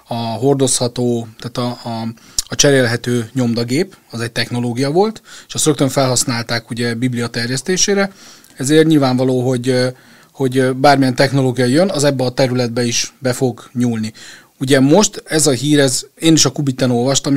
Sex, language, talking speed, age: male, Hungarian, 155 wpm, 30-49